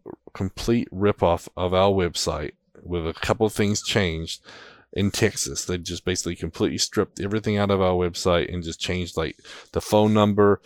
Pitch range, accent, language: 85-105 Hz, American, English